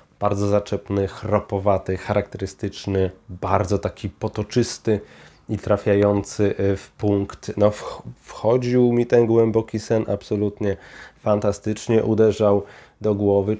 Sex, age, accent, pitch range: male, 30-49, native, 100-120 Hz